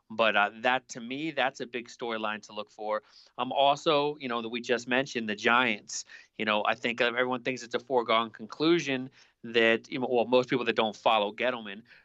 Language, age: English, 30-49